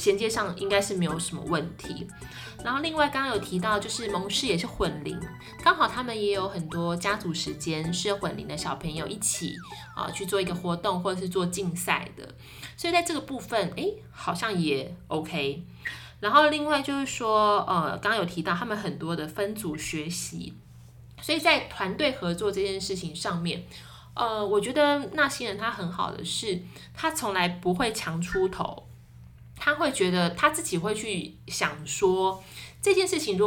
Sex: female